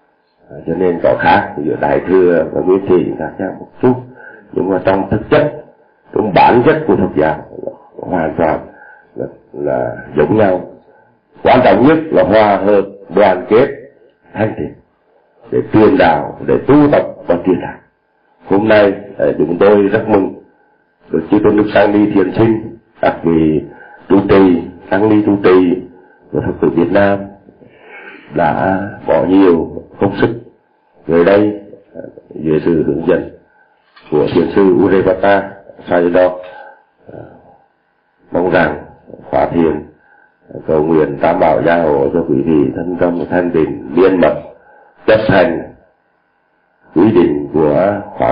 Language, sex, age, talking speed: Vietnamese, male, 60-79, 145 wpm